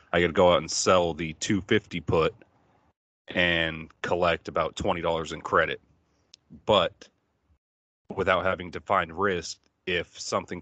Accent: American